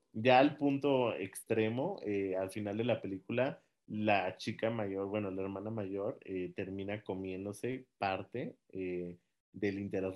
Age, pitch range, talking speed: 30-49, 95-115 Hz, 140 wpm